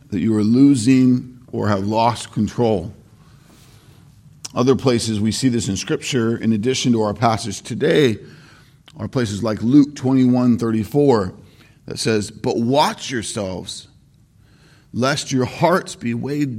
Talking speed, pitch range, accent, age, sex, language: 135 wpm, 115-145 Hz, American, 40-59, male, English